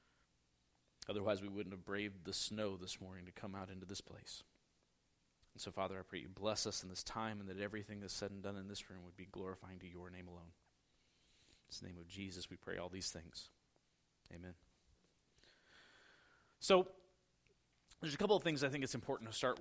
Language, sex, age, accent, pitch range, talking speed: English, male, 30-49, American, 100-160 Hz, 200 wpm